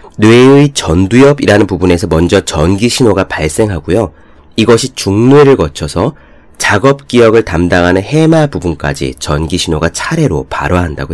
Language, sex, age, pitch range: Korean, male, 30-49, 80-125 Hz